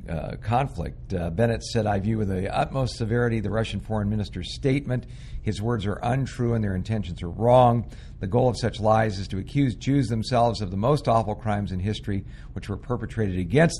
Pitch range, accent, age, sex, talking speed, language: 95-120 Hz, American, 50-69, male, 200 wpm, English